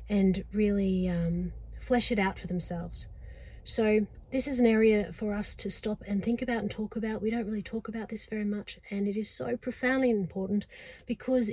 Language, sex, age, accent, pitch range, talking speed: English, female, 30-49, Australian, 200-240 Hz, 200 wpm